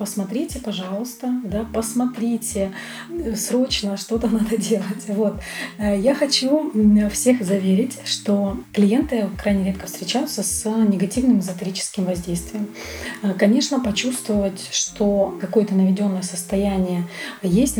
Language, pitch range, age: Russian, 195-230 Hz, 30-49